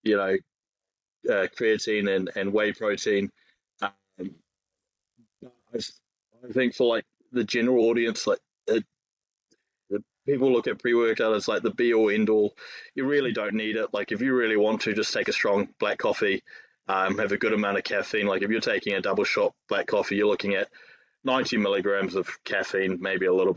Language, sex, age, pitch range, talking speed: English, male, 20-39, 105-145 Hz, 185 wpm